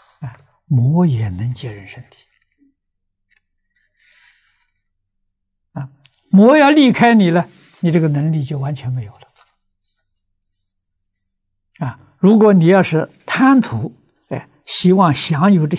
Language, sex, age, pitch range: Chinese, male, 60-79, 95-155 Hz